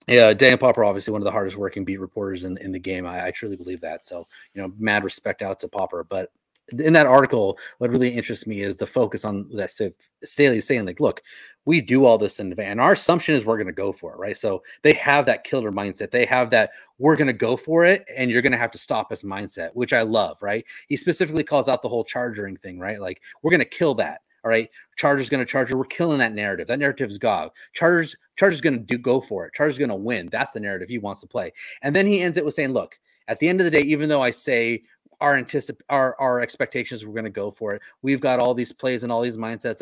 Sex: male